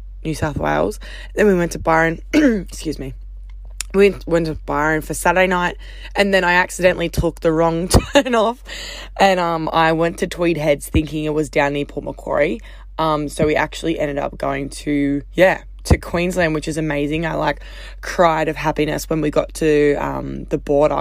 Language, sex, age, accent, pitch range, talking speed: English, female, 20-39, Australian, 145-170 Hz, 190 wpm